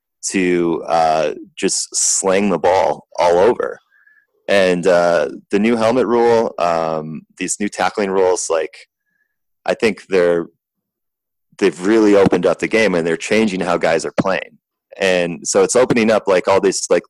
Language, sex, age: English, male, 30-49